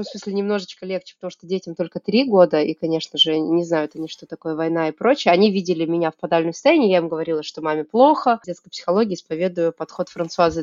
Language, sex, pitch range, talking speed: Russian, female, 170-200 Hz, 215 wpm